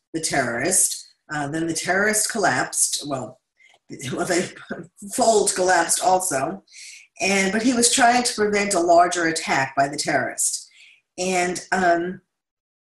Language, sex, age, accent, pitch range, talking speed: English, female, 50-69, American, 160-190 Hz, 130 wpm